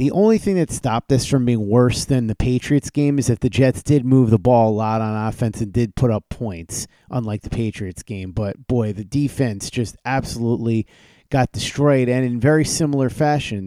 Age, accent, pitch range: 30-49, American, 120-140 Hz